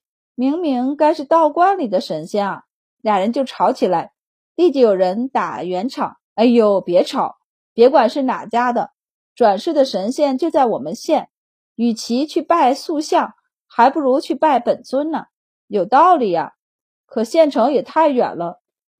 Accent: native